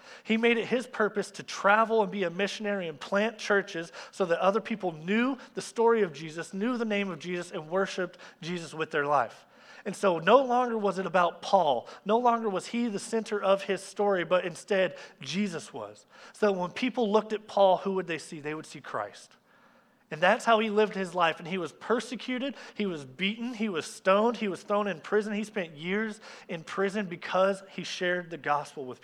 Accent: American